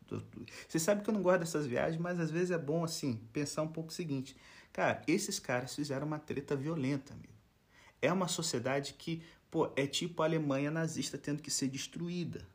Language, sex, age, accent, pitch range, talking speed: Portuguese, male, 40-59, Brazilian, 110-155 Hz, 185 wpm